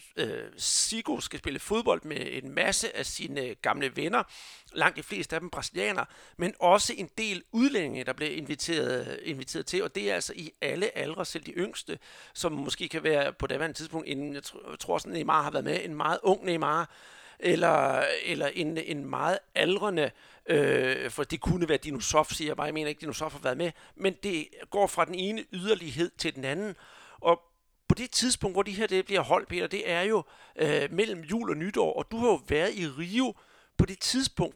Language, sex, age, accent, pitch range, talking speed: Danish, male, 60-79, native, 155-210 Hz, 205 wpm